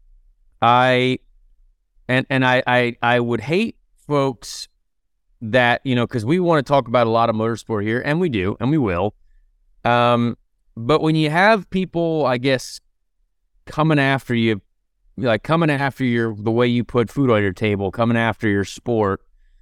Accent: American